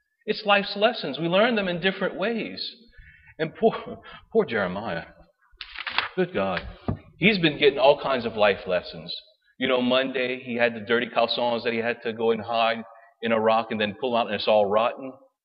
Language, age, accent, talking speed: English, 40-59, American, 190 wpm